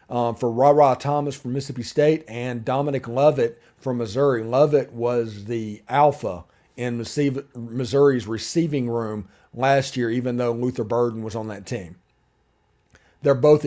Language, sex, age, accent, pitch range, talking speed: English, male, 40-59, American, 115-145 Hz, 140 wpm